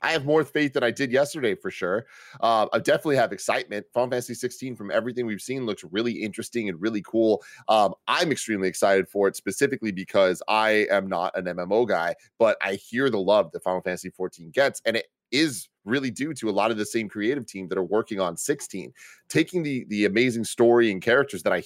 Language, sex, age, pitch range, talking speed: English, male, 30-49, 105-130 Hz, 220 wpm